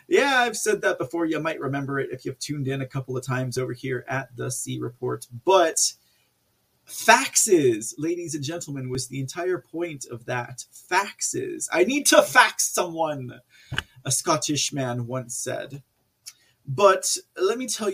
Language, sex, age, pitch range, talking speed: English, male, 30-49, 130-195 Hz, 165 wpm